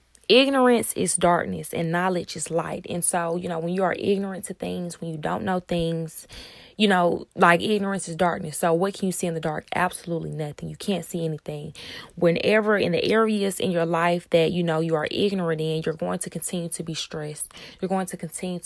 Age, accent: 20-39, American